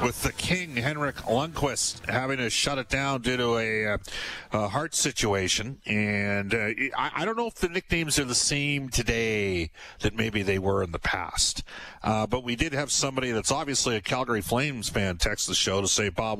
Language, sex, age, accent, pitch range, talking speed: English, male, 40-59, American, 100-135 Hz, 200 wpm